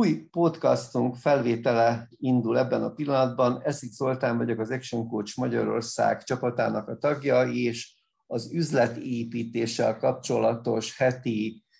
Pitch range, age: 115-130 Hz, 50-69